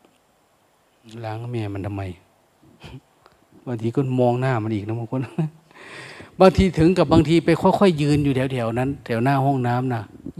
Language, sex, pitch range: Thai, male, 115-150 Hz